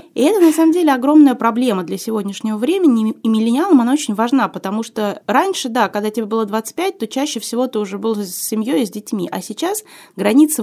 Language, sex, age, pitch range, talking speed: Russian, female, 20-39, 210-265 Hz, 210 wpm